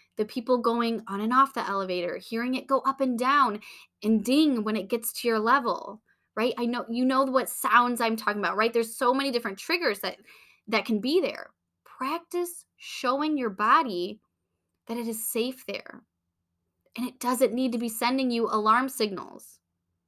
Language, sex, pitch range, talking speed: English, female, 210-270 Hz, 185 wpm